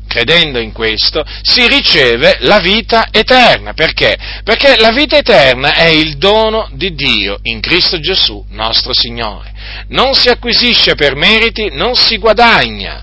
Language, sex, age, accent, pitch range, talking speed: Italian, male, 40-59, native, 115-195 Hz, 145 wpm